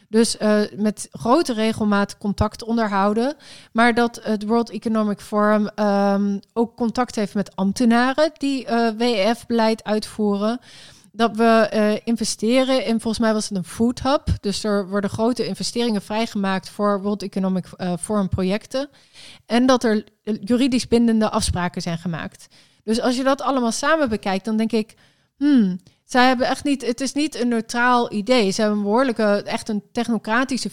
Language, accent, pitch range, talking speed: Dutch, Dutch, 205-240 Hz, 155 wpm